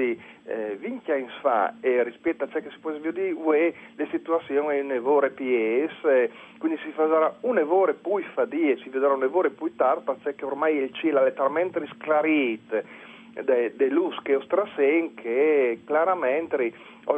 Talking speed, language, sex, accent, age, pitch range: 160 wpm, Italian, male, native, 40-59, 135-190 Hz